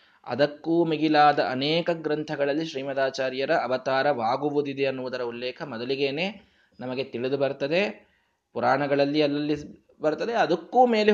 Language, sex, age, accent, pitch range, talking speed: Kannada, male, 20-39, native, 130-185 Hz, 90 wpm